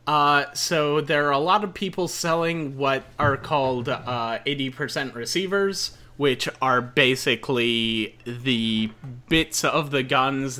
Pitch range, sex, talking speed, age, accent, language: 115-170 Hz, male, 130 wpm, 30-49, American, English